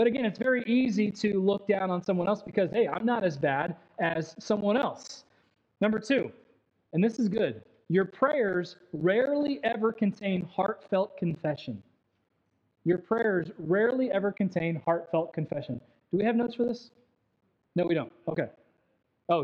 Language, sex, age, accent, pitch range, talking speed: English, male, 20-39, American, 150-210 Hz, 155 wpm